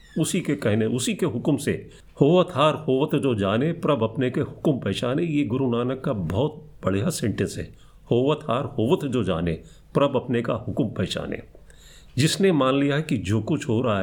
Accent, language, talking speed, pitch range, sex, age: Indian, English, 170 wpm, 120-155 Hz, male, 50-69